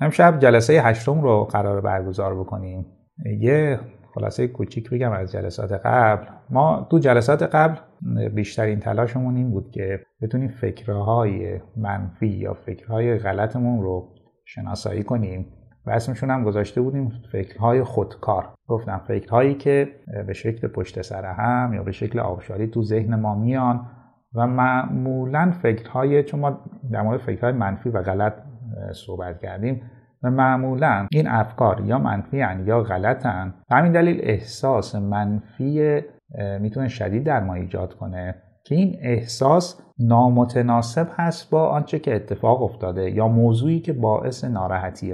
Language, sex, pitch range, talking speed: Persian, male, 105-130 Hz, 135 wpm